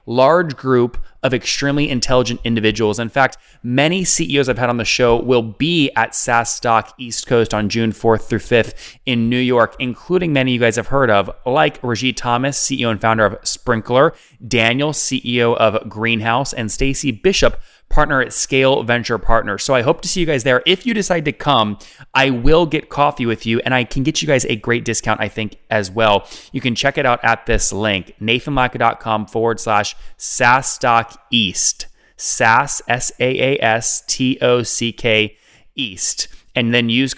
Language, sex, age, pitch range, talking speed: English, male, 20-39, 110-130 Hz, 175 wpm